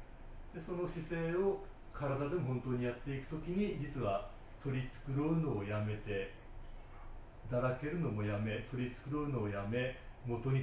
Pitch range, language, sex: 100-140 Hz, Japanese, male